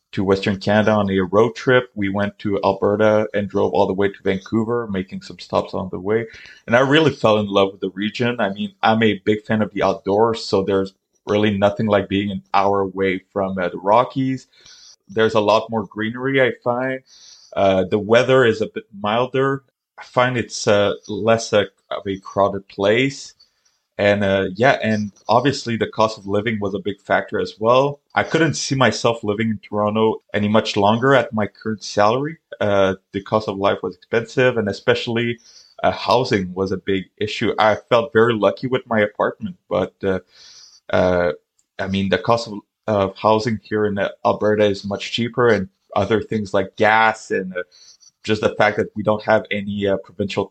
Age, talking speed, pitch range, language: 20-39, 190 wpm, 100-115 Hz, English